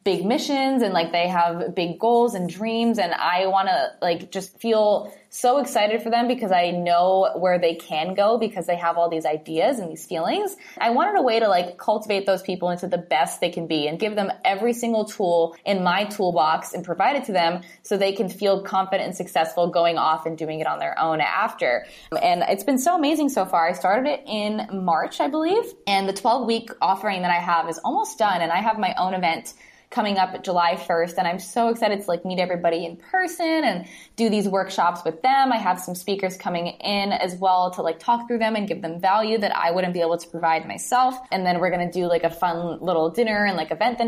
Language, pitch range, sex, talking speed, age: English, 170-220 Hz, female, 235 wpm, 20-39